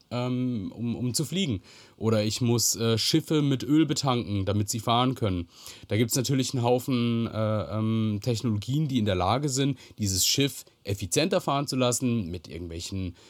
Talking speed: 170 wpm